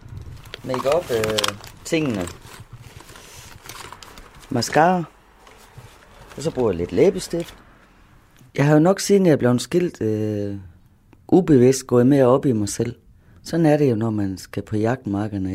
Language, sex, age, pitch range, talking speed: Danish, female, 30-49, 110-145 Hz, 145 wpm